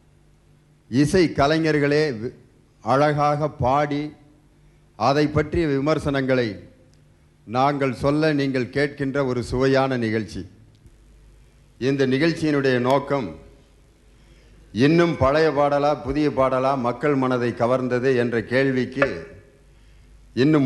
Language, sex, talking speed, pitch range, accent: Tamil, male, 80 wpm, 125-150 Hz, native